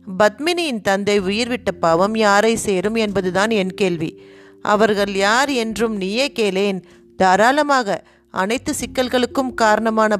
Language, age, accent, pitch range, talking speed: Tamil, 30-49, native, 195-245 Hz, 105 wpm